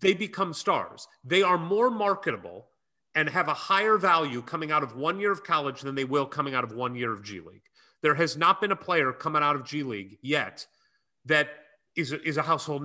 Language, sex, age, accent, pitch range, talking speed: English, male, 40-59, American, 140-180 Hz, 220 wpm